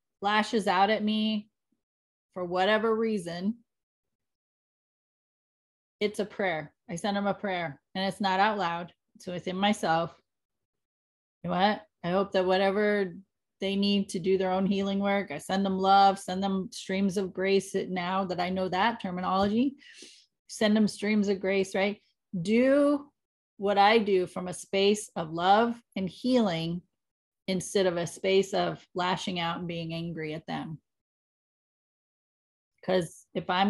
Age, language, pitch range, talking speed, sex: 30-49, English, 180-210 Hz, 150 wpm, female